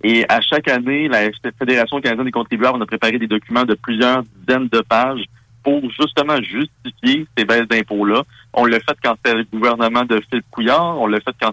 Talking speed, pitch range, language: 205 wpm, 115-135 Hz, French